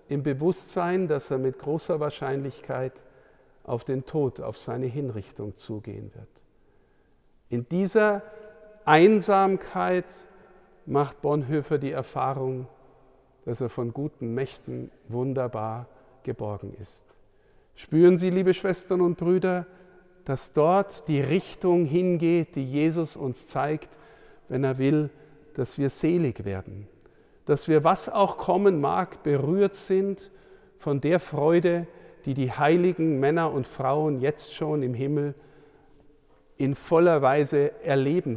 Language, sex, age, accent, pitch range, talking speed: German, male, 50-69, German, 130-180 Hz, 120 wpm